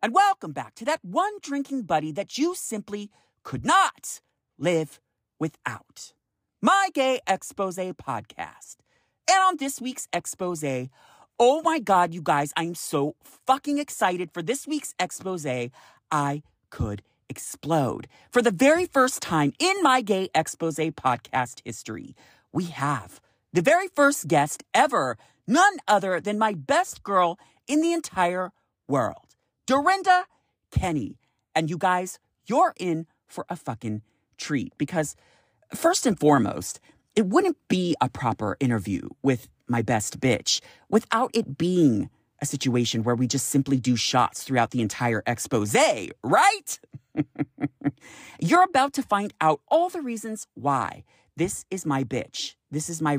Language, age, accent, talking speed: English, 40-59, American, 140 wpm